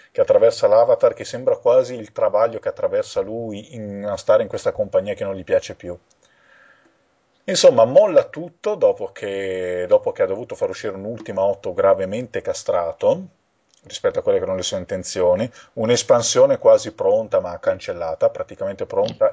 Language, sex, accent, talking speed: Italian, male, native, 160 wpm